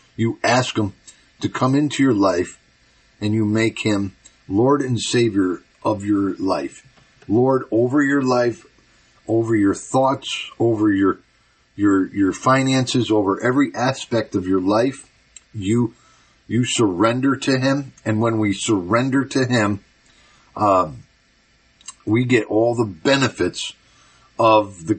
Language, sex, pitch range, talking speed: English, male, 100-130 Hz, 135 wpm